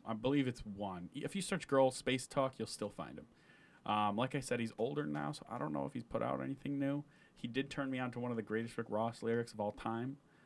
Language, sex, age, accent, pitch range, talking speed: English, male, 30-49, American, 100-125 Hz, 270 wpm